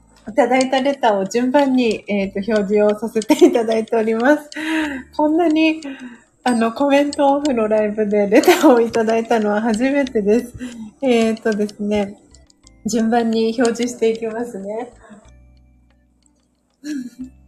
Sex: female